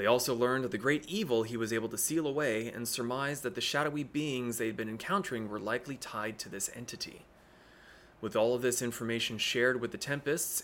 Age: 30-49